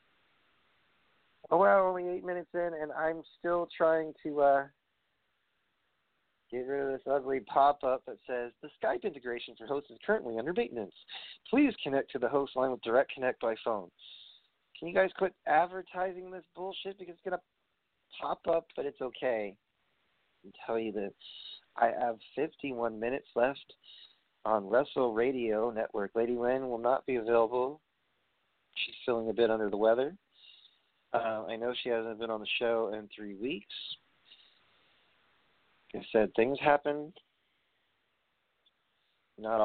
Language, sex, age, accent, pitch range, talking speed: English, male, 40-59, American, 115-150 Hz, 150 wpm